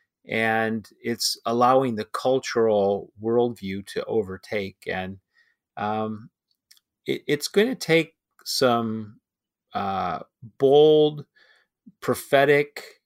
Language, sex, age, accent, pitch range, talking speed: English, male, 40-59, American, 110-135 Hz, 85 wpm